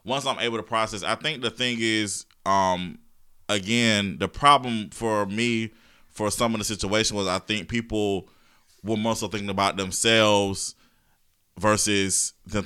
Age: 20-39